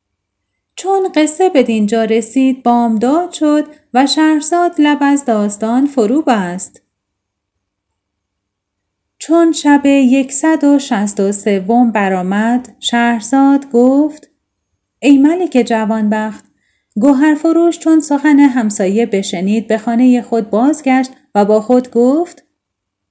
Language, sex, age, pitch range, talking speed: Persian, female, 30-49, 205-280 Hz, 95 wpm